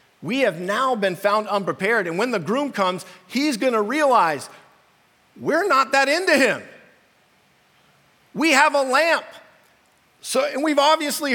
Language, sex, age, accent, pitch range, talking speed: English, male, 50-69, American, 185-265 Hz, 145 wpm